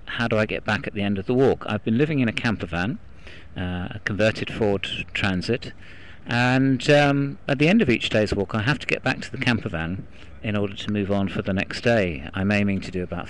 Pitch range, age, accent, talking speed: 90-110 Hz, 40-59, British, 240 wpm